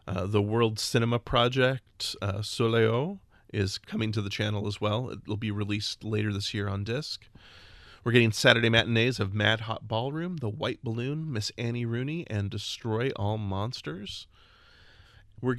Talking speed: 160 wpm